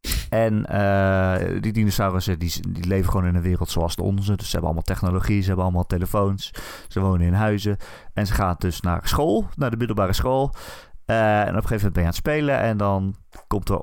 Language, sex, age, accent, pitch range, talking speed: Dutch, male, 30-49, Dutch, 90-110 Hz, 225 wpm